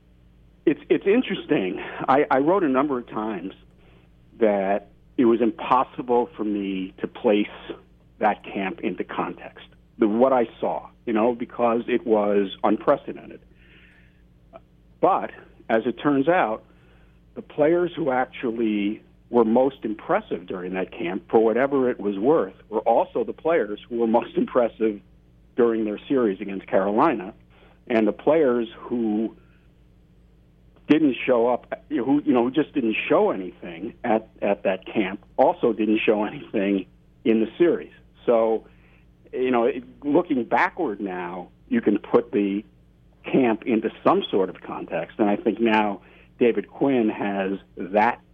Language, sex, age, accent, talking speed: English, male, 50-69, American, 140 wpm